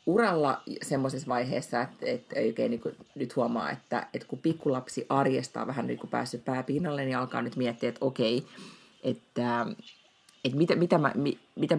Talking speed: 165 wpm